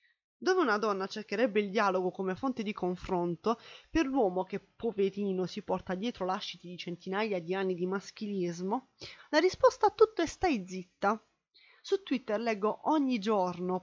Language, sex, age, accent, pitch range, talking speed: Italian, female, 20-39, native, 185-235 Hz, 155 wpm